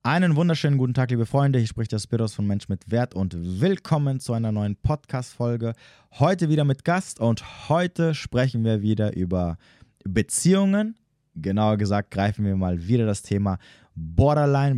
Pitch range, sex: 105-145 Hz, male